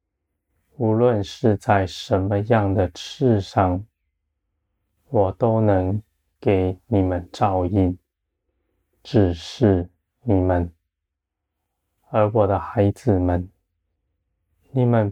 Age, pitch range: 20-39, 85-105 Hz